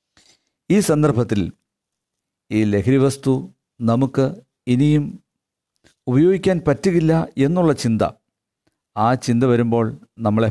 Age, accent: 50-69, native